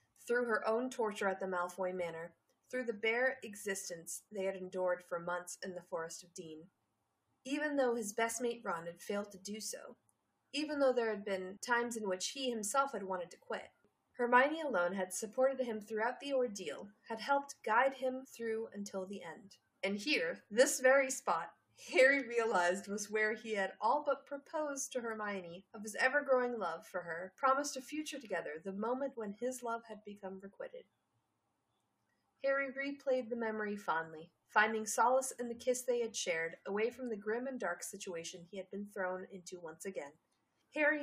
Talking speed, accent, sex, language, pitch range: 185 wpm, American, female, English, 190-260 Hz